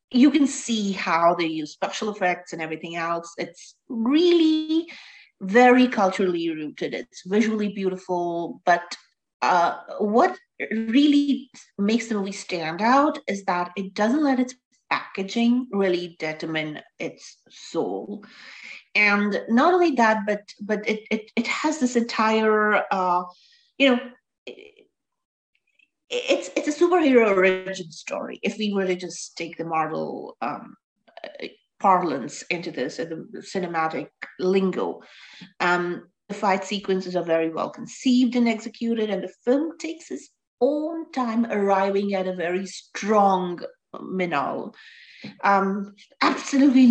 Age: 30-49